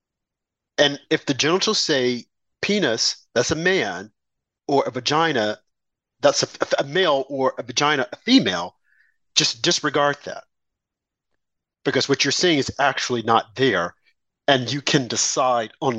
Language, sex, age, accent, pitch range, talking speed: English, male, 50-69, American, 140-215 Hz, 140 wpm